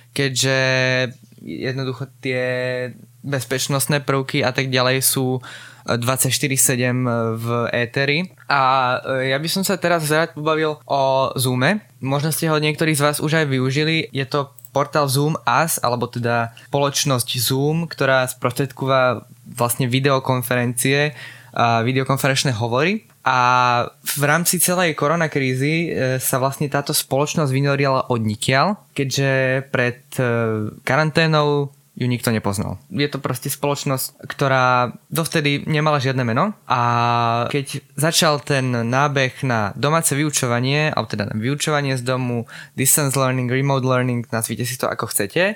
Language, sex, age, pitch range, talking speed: Slovak, male, 20-39, 125-145 Hz, 125 wpm